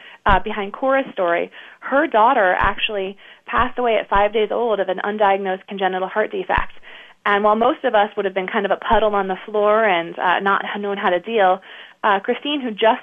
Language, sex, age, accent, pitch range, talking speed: English, female, 20-39, American, 190-230 Hz, 205 wpm